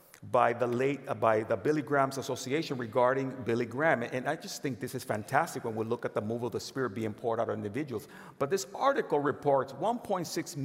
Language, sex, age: English, male, 50-69